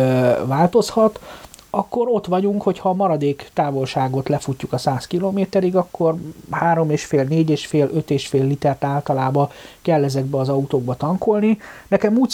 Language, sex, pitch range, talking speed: Hungarian, male, 130-180 Hz, 150 wpm